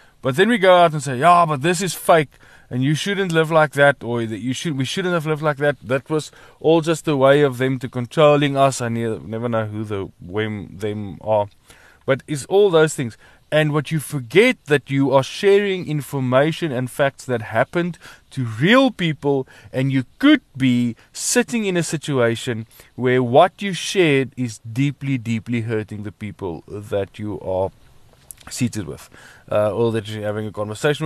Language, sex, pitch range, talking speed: English, male, 115-150 Hz, 190 wpm